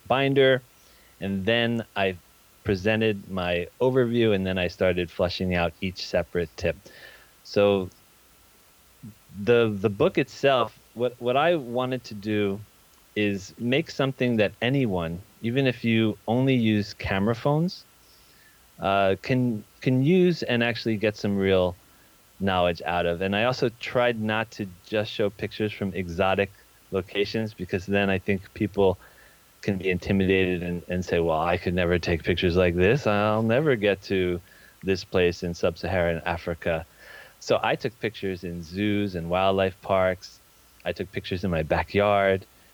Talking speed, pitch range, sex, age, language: 150 wpm, 90-110 Hz, male, 30-49, English